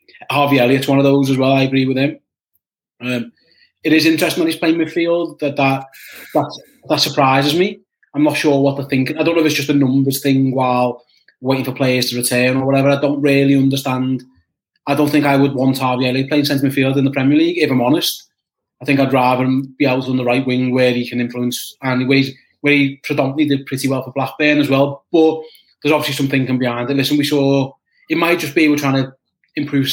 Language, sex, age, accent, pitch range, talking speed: English, male, 20-39, British, 130-150 Hz, 235 wpm